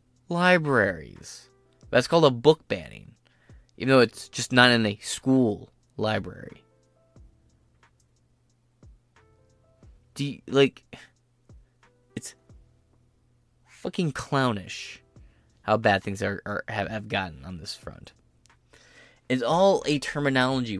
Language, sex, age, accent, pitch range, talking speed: English, male, 20-39, American, 110-145 Hz, 105 wpm